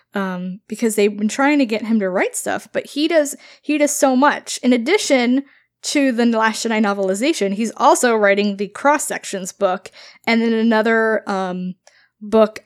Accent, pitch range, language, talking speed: American, 205-270 Hz, English, 170 wpm